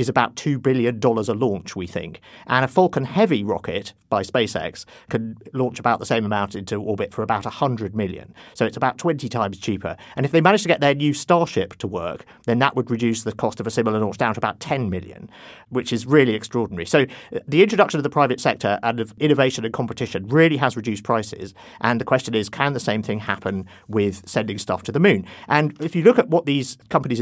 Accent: British